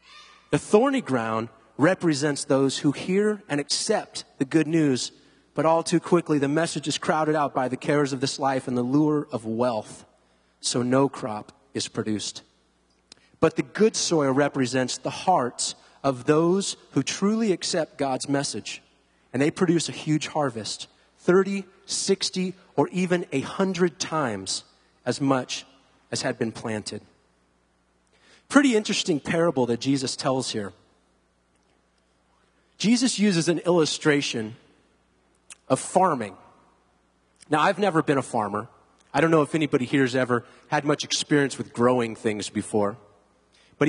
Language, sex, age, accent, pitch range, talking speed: English, male, 30-49, American, 110-165 Hz, 140 wpm